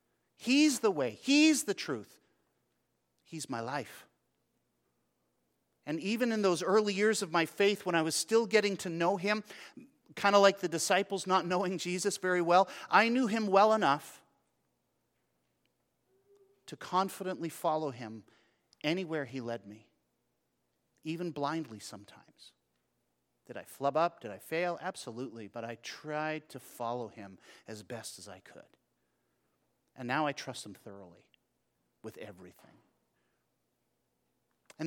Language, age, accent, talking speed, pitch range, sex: English, 40-59, American, 140 wpm, 125-185 Hz, male